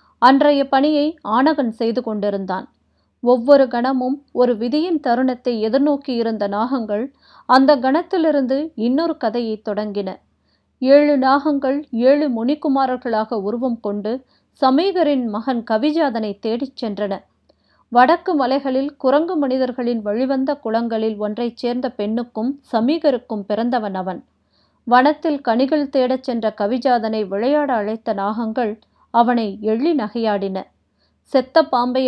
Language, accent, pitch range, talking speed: Tamil, native, 230-280 Hz, 95 wpm